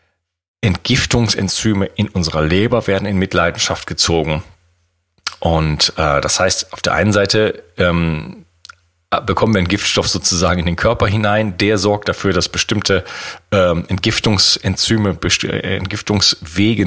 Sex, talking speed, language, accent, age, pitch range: male, 120 wpm, German, German, 40-59, 85-105 Hz